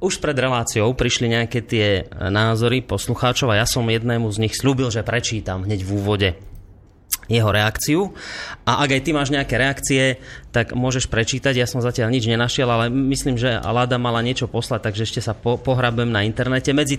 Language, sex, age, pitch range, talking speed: Slovak, male, 30-49, 115-145 Hz, 185 wpm